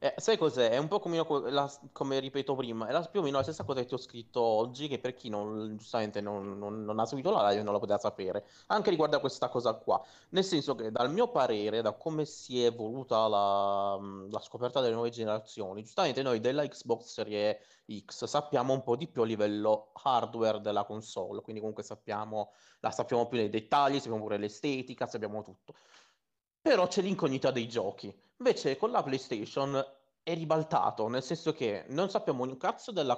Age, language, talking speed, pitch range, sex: 20-39, Italian, 200 wpm, 105-135 Hz, male